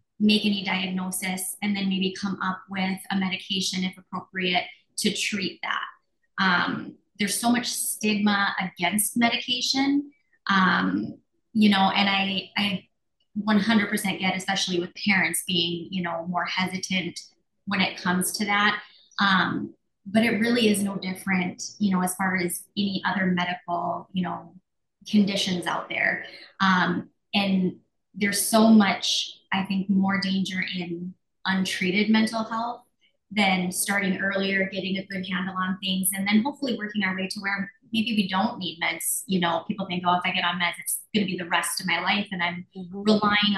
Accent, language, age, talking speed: American, English, 20-39, 165 wpm